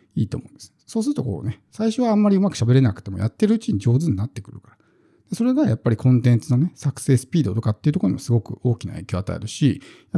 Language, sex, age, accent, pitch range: Japanese, male, 50-69, native, 115-155 Hz